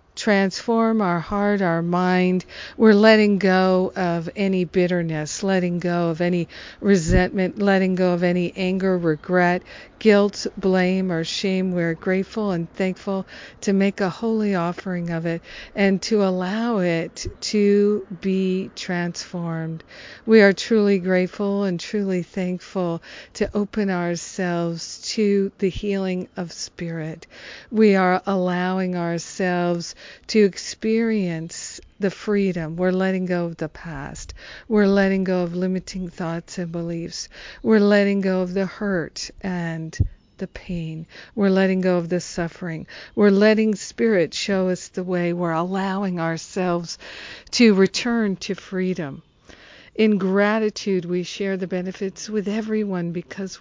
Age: 50-69